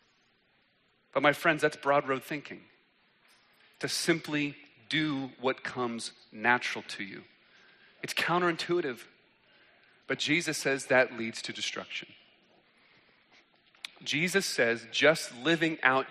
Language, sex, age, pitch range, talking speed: English, male, 30-49, 125-155 Hz, 110 wpm